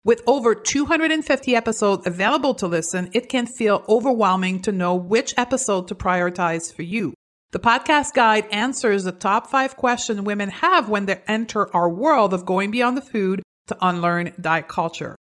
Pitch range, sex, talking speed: 185-250 Hz, female, 170 wpm